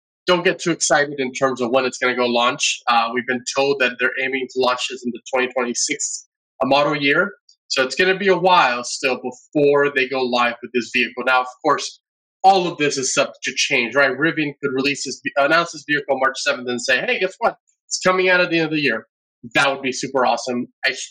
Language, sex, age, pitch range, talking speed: English, male, 20-39, 125-150 Hz, 240 wpm